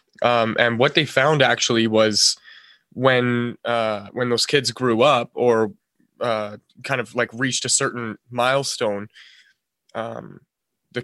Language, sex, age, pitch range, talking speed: English, male, 20-39, 115-140 Hz, 135 wpm